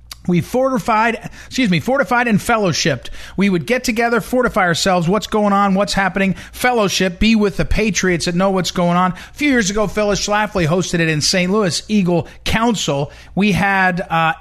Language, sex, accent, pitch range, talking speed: English, male, American, 165-220 Hz, 185 wpm